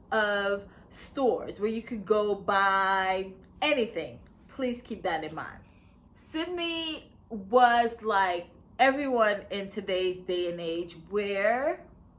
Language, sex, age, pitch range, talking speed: English, female, 20-39, 200-255 Hz, 115 wpm